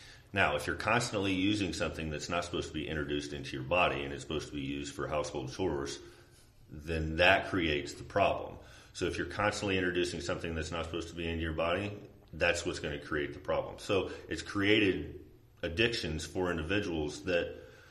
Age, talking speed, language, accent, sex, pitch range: 40-59, 190 wpm, English, American, male, 75-95 Hz